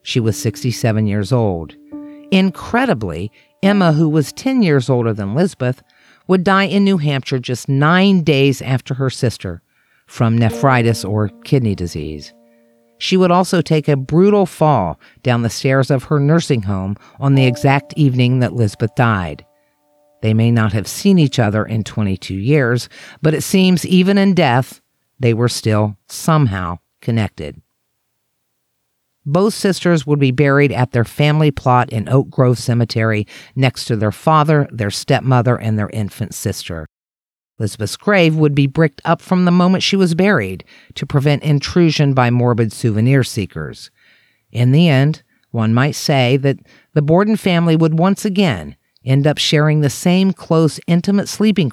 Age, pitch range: 50-69, 110-160 Hz